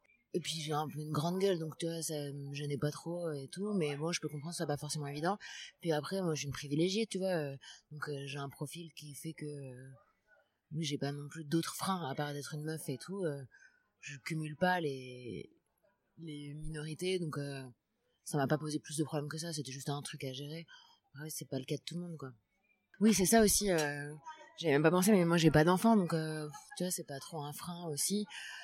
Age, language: 20-39, French